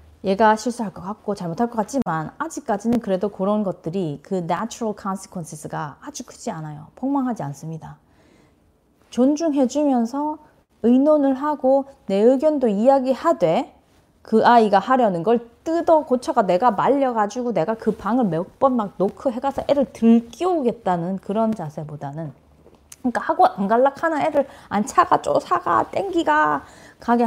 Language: Korean